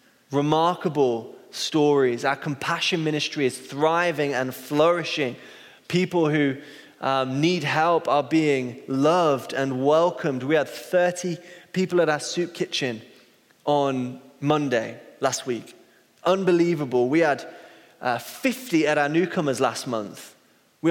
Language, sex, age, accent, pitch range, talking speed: English, male, 20-39, British, 135-165 Hz, 120 wpm